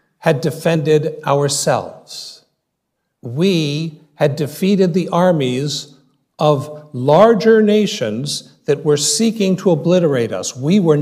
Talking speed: 105 wpm